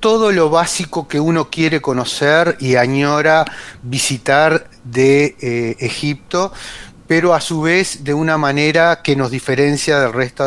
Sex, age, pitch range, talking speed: male, 30-49, 125-155 Hz, 145 wpm